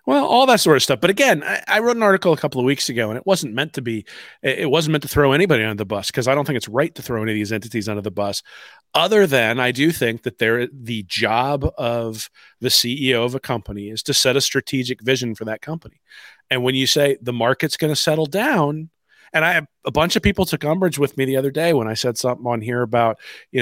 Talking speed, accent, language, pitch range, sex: 260 wpm, American, English, 120-150 Hz, male